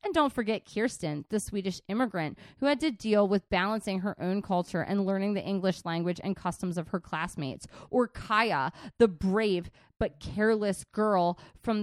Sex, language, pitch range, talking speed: female, English, 195-235 Hz, 170 wpm